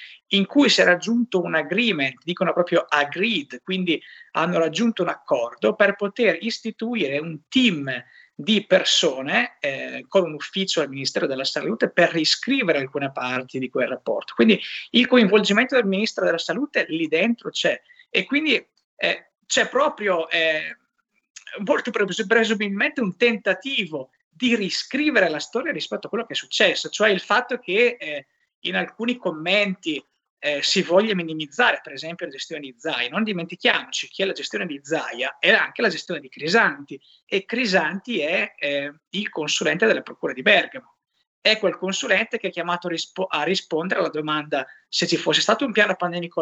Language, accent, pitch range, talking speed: Italian, native, 160-225 Hz, 165 wpm